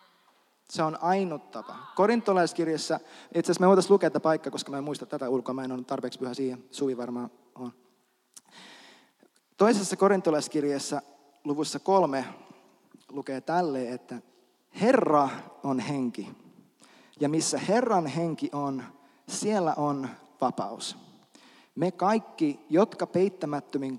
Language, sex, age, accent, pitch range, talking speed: Finnish, male, 30-49, native, 135-170 Hz, 115 wpm